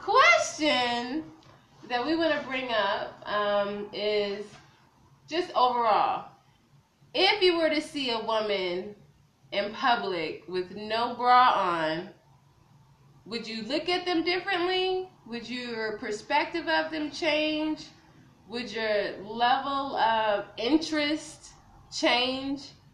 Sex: female